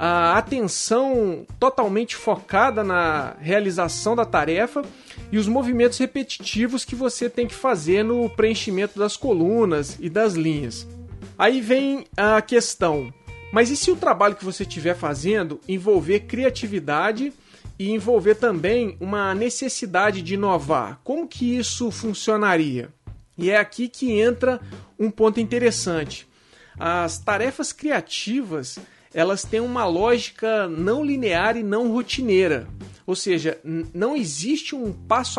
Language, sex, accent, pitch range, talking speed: Portuguese, male, Brazilian, 180-245 Hz, 130 wpm